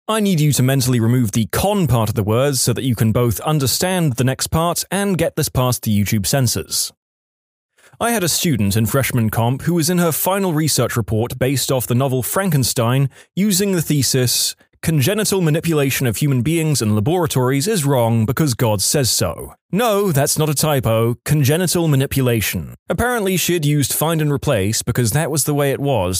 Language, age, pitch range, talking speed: English, 20-39, 115-160 Hz, 190 wpm